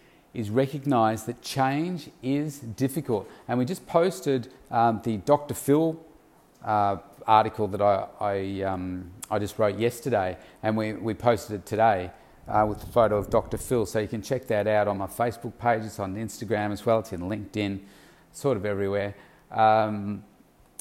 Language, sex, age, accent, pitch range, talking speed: English, male, 40-59, Australian, 100-130 Hz, 170 wpm